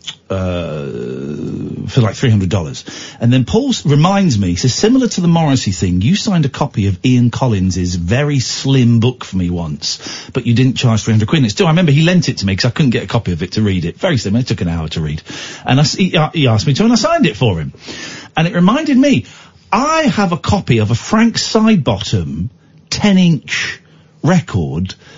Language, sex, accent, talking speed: English, male, British, 220 wpm